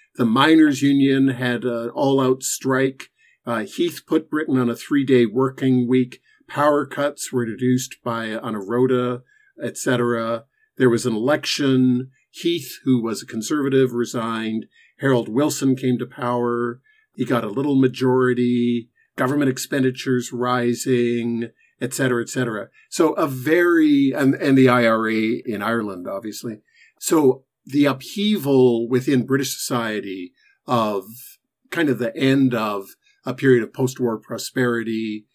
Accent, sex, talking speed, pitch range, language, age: American, male, 130 wpm, 120-135 Hz, English, 50-69